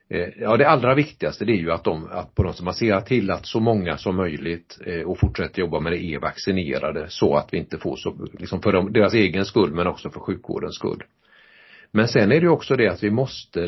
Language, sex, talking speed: Swedish, male, 230 wpm